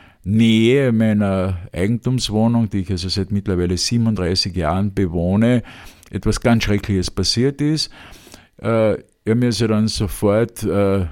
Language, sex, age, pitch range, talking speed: German, male, 50-69, 95-115 Hz, 120 wpm